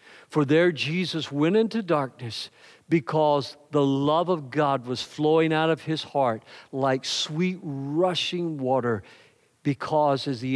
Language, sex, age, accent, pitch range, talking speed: English, male, 50-69, American, 120-165 Hz, 135 wpm